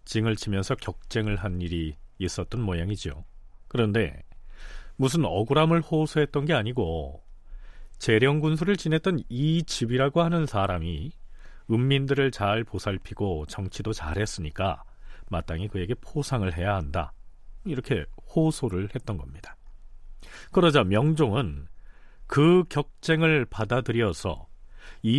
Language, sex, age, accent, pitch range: Korean, male, 40-59, native, 90-145 Hz